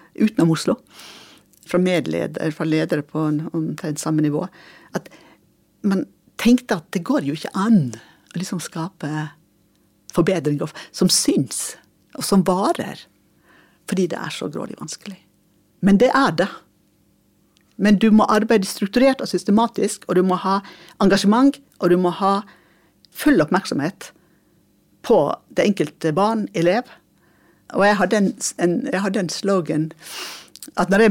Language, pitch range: English, 165-220 Hz